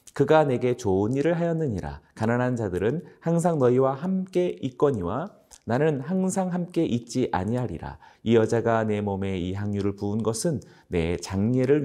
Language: Korean